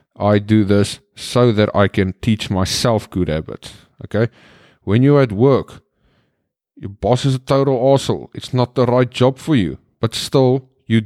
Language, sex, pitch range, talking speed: English, male, 105-125 Hz, 175 wpm